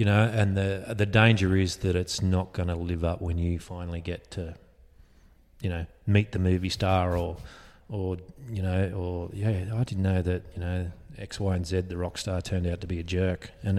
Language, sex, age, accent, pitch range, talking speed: English, male, 30-49, Australian, 90-105 Hz, 220 wpm